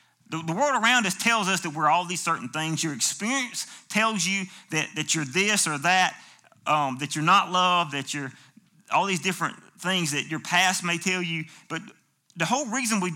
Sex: male